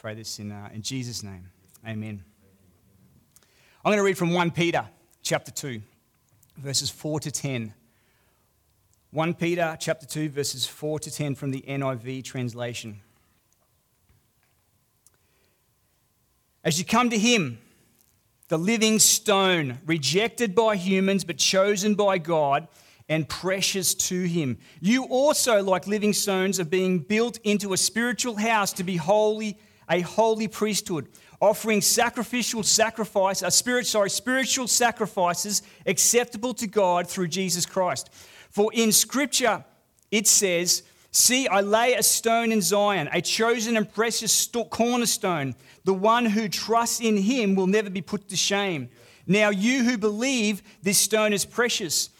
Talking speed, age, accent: 140 wpm, 30-49, Australian